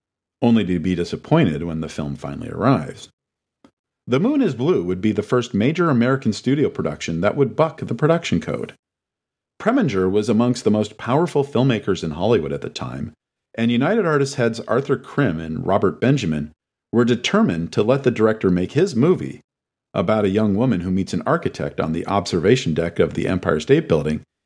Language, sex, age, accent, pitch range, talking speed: English, male, 50-69, American, 95-150 Hz, 180 wpm